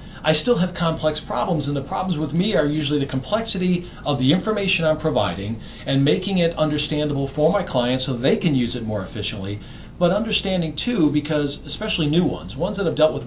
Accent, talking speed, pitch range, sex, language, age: American, 205 wpm, 135-180 Hz, male, English, 40-59